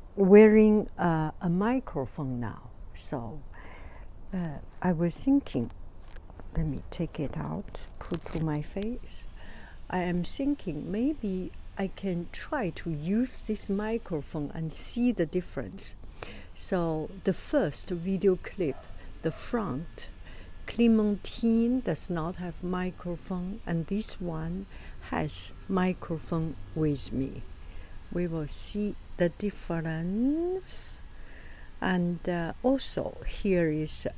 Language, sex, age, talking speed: English, female, 60-79, 110 wpm